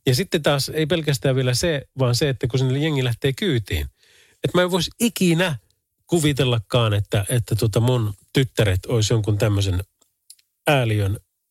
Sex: male